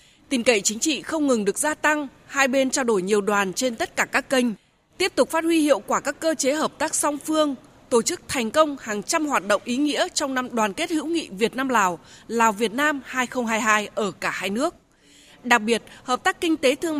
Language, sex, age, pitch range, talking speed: Vietnamese, female, 20-39, 225-300 Hz, 235 wpm